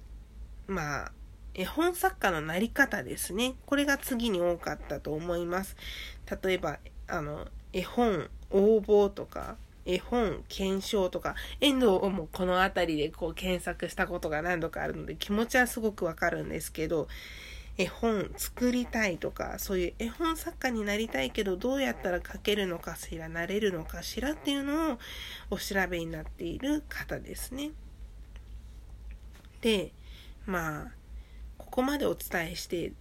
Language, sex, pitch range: Japanese, female, 175-250 Hz